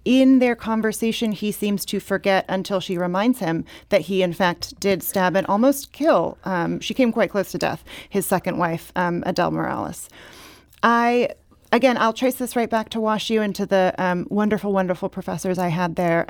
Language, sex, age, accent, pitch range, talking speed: English, female, 30-49, American, 180-215 Hz, 190 wpm